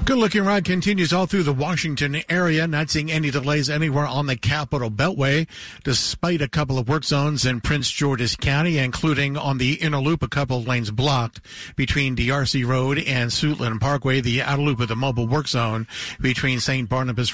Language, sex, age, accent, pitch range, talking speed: English, male, 50-69, American, 120-145 Hz, 190 wpm